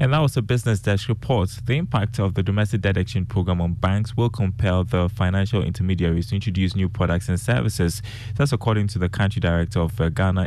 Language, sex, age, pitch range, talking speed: English, male, 20-39, 90-110 Hz, 205 wpm